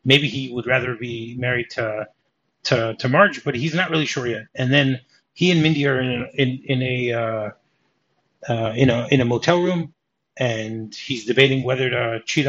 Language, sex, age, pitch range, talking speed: English, male, 30-49, 120-145 Hz, 195 wpm